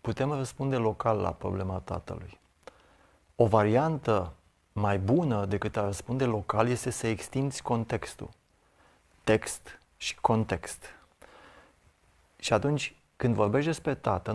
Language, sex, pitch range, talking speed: Romanian, male, 100-120 Hz, 115 wpm